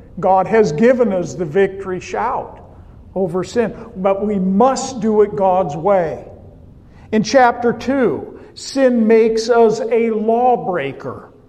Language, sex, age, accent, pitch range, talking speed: English, male, 50-69, American, 185-235 Hz, 125 wpm